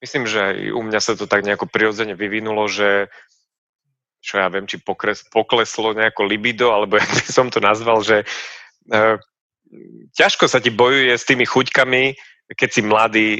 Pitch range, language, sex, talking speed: 105-120 Hz, Slovak, male, 160 wpm